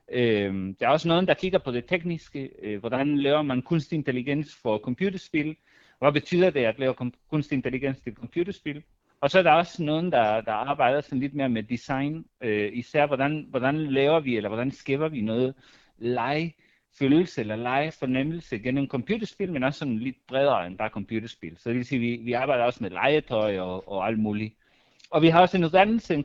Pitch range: 115-155 Hz